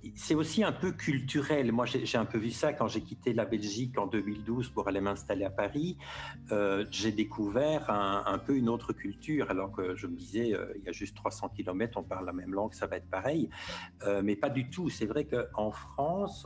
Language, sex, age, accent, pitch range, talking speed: French, male, 60-79, French, 105-140 Hz, 230 wpm